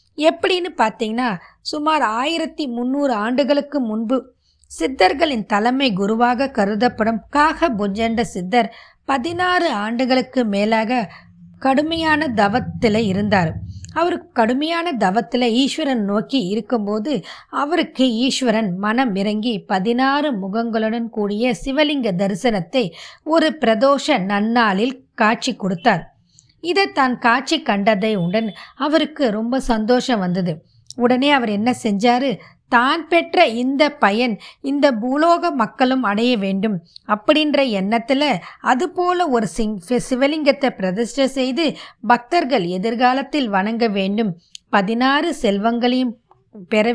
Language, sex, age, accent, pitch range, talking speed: Tamil, female, 20-39, native, 215-275 Hz, 95 wpm